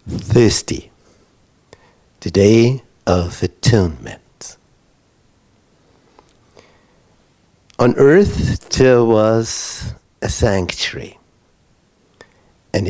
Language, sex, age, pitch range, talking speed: English, male, 60-79, 95-125 Hz, 55 wpm